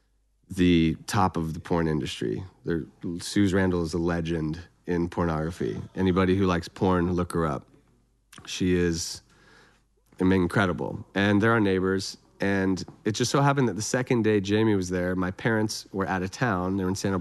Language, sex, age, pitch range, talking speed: English, male, 30-49, 90-125 Hz, 180 wpm